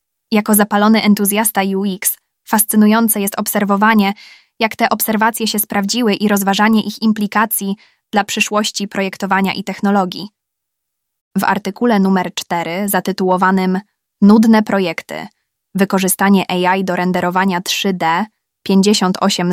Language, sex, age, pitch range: Polish, female, 20-39, 185-210 Hz